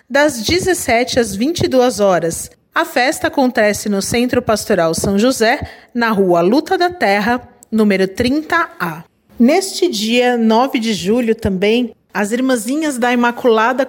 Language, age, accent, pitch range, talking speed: Portuguese, 40-59, Brazilian, 205-270 Hz, 130 wpm